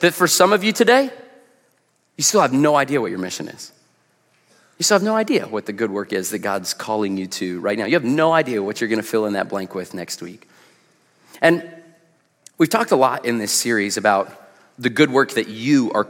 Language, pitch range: English, 105-160 Hz